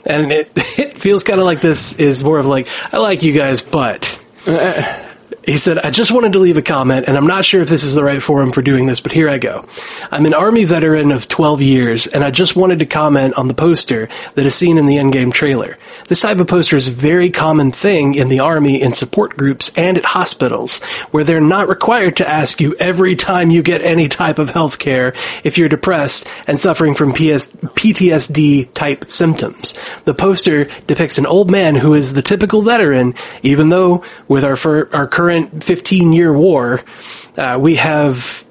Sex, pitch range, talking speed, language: male, 140-185 Hz, 205 wpm, English